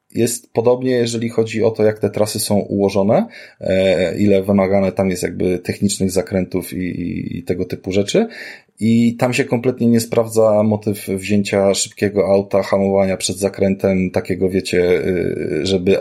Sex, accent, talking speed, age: male, native, 150 wpm, 20-39